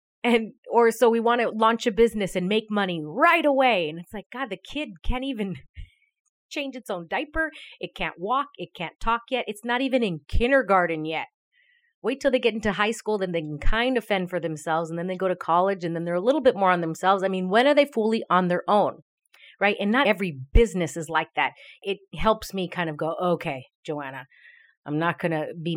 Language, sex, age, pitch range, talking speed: English, female, 30-49, 160-230 Hz, 230 wpm